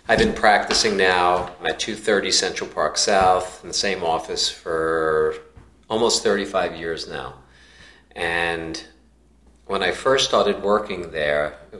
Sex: male